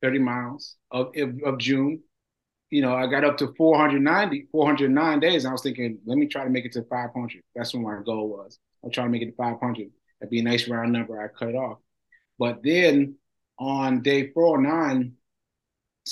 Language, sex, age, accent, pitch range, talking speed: English, male, 30-49, American, 115-145 Hz, 205 wpm